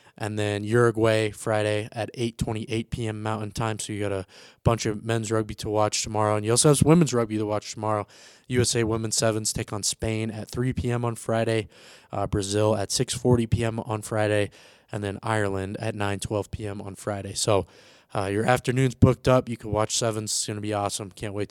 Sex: male